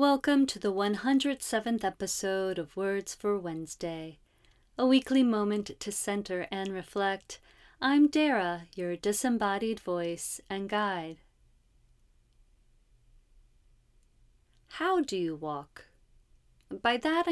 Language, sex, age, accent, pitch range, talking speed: English, female, 30-49, American, 165-250 Hz, 100 wpm